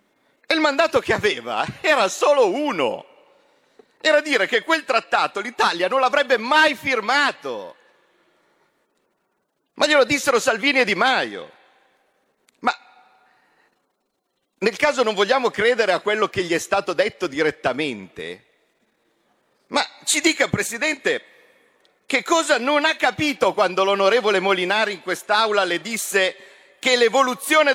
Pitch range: 215-310 Hz